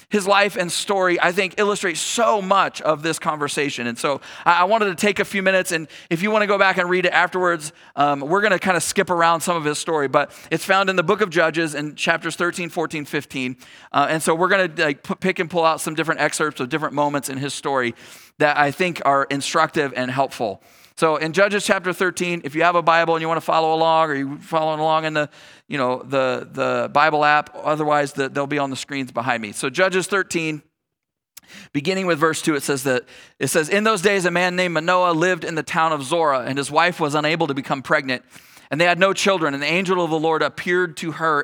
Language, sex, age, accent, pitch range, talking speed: English, male, 40-59, American, 140-175 Hz, 240 wpm